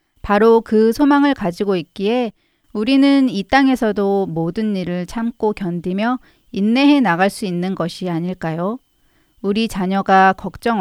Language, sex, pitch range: Korean, female, 185-240 Hz